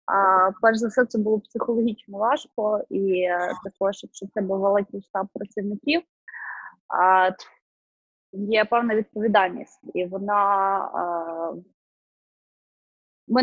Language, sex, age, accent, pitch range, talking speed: Ukrainian, female, 20-39, native, 210-255 Hz, 100 wpm